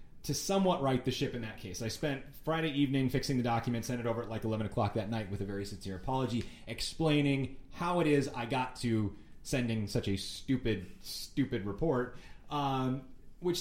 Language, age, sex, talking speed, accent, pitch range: English, 30-49, male, 195 wpm, American, 110-155 Hz